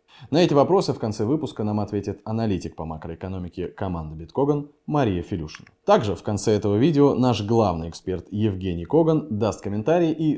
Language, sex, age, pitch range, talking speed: Russian, male, 20-39, 95-125 Hz, 160 wpm